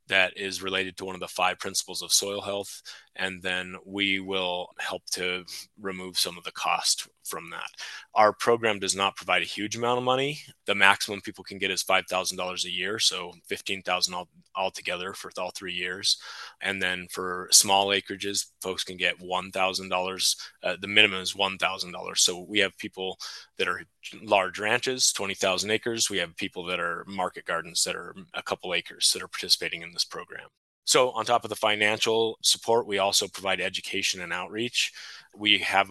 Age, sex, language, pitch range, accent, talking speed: 20-39, male, English, 90-105 Hz, American, 180 wpm